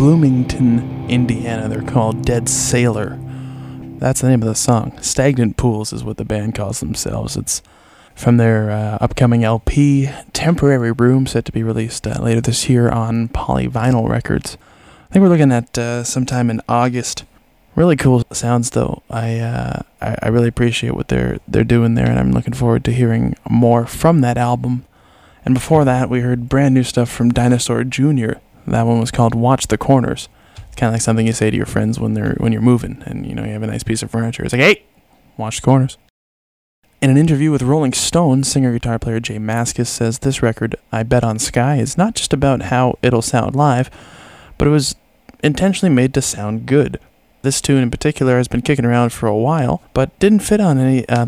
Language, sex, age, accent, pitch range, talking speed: English, male, 20-39, American, 115-130 Hz, 200 wpm